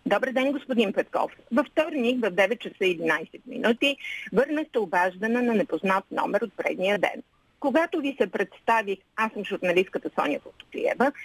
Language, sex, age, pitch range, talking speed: Bulgarian, female, 50-69, 195-265 Hz, 150 wpm